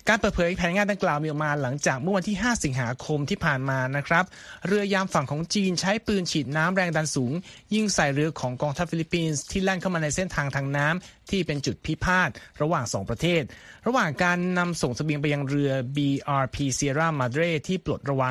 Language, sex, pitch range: Thai, male, 140-180 Hz